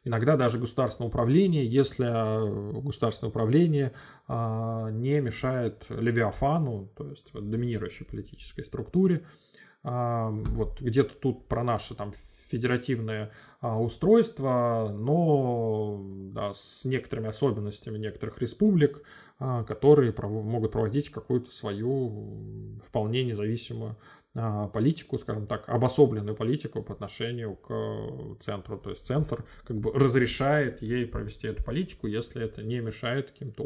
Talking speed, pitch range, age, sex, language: 105 wpm, 110-135 Hz, 20-39, male, Russian